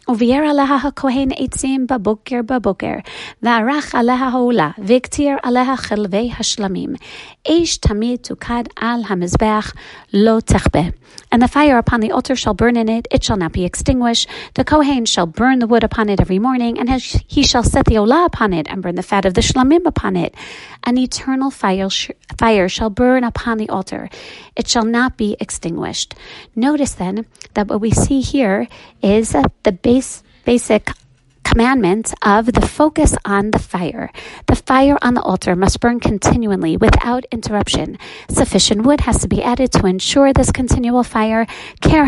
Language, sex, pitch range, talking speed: English, female, 210-260 Hz, 135 wpm